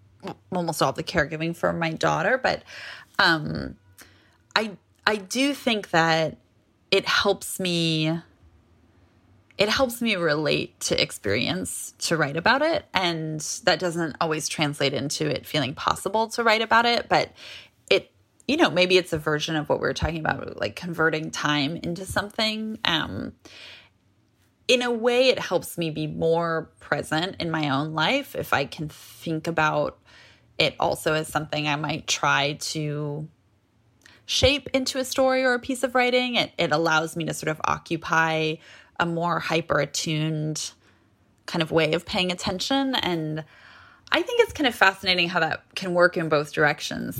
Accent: American